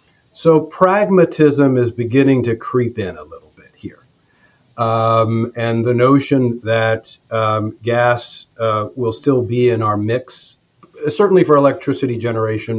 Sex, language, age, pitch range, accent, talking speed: male, English, 40-59, 115-155 Hz, American, 135 wpm